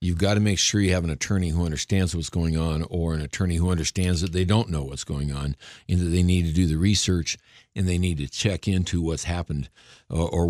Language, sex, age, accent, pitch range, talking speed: English, male, 60-79, American, 80-95 Hz, 245 wpm